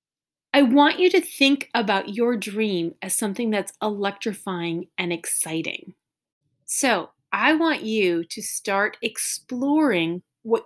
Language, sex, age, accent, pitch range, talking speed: English, female, 30-49, American, 190-260 Hz, 125 wpm